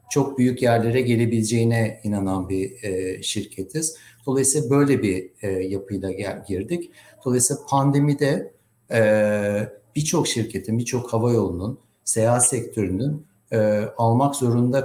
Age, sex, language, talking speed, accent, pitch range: 60-79, male, Turkish, 110 wpm, native, 105-140 Hz